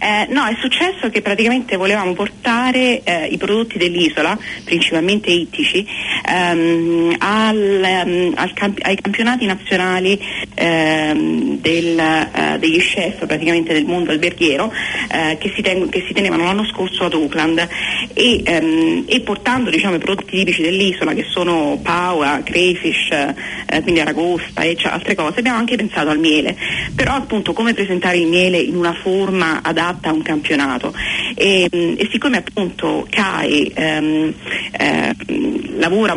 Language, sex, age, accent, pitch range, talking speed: Italian, female, 30-49, native, 165-210 Hz, 145 wpm